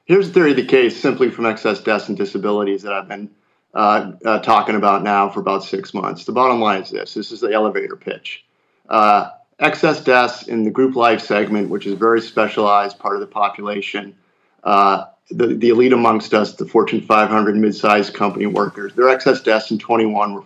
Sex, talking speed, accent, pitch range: male, 200 wpm, American, 105-130 Hz